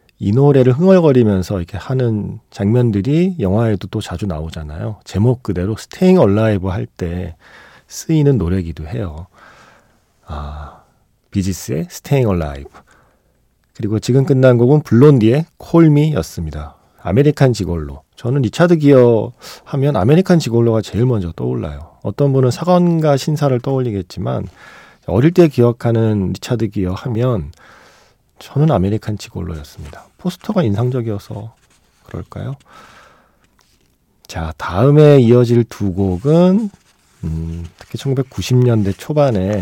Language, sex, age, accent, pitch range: Korean, male, 40-59, native, 95-135 Hz